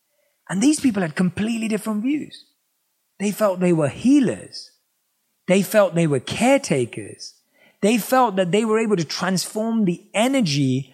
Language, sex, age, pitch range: English, male, 30-49, 175-235 Hz